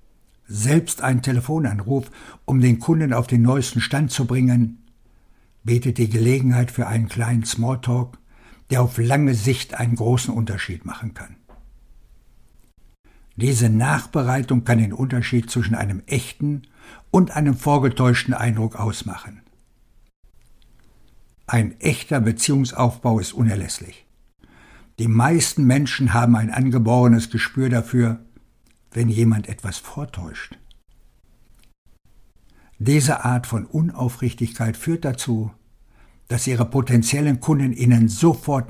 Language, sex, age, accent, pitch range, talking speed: German, male, 60-79, German, 115-130 Hz, 110 wpm